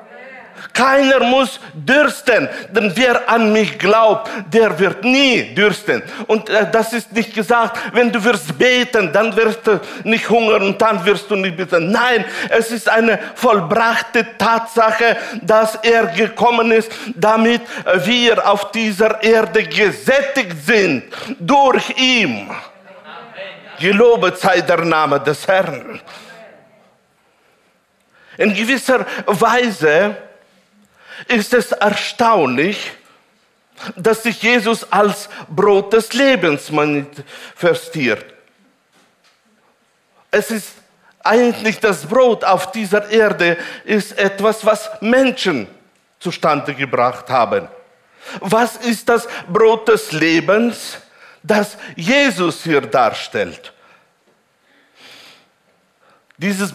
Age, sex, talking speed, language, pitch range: 50-69, male, 105 wpm, German, 200-235 Hz